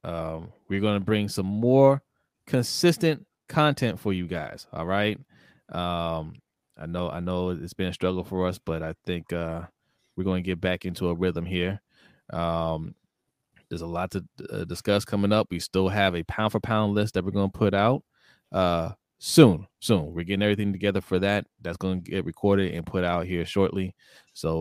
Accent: American